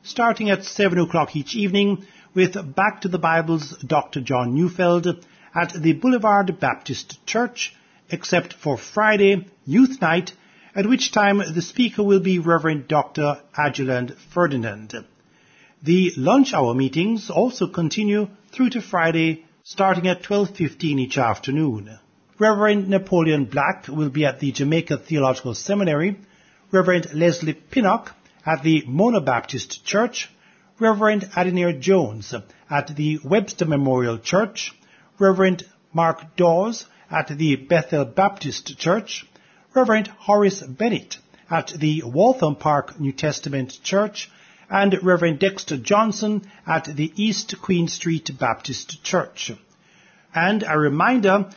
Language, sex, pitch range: English, male, 150-200 Hz